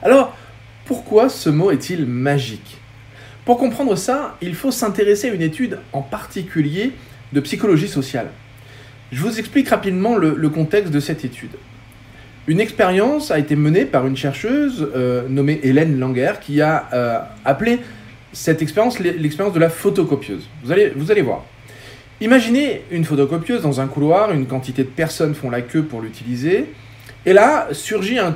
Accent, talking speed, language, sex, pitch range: French, 160 wpm, French, male, 125-200 Hz